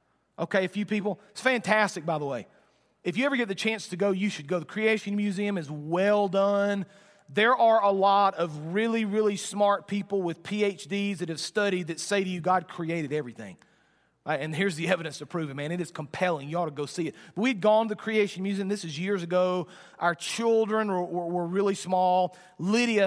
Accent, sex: American, male